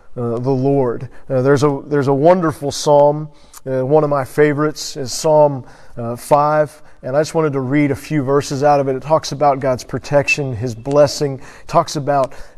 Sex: male